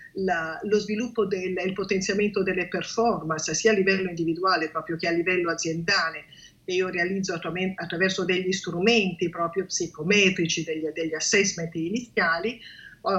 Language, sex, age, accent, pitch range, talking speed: Italian, female, 50-69, native, 170-205 Hz, 135 wpm